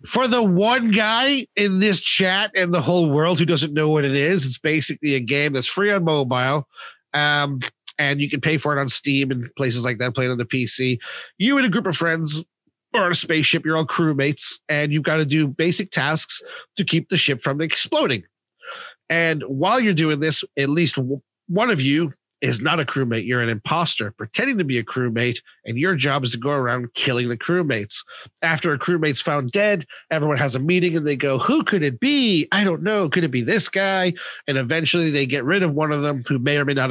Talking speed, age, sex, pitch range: 225 wpm, 30-49, male, 135-185 Hz